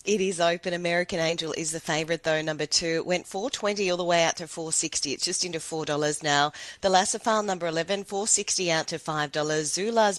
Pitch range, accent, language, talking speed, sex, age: 160-195 Hz, Australian, English, 210 wpm, female, 30-49